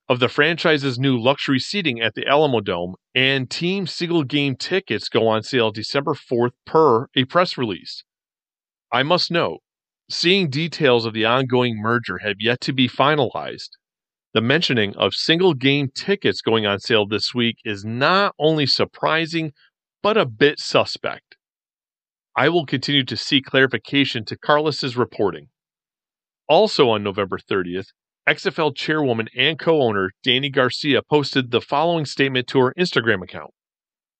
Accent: American